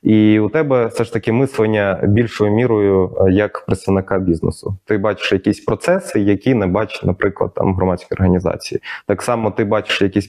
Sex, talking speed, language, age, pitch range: male, 165 wpm, Ukrainian, 20-39, 95-120 Hz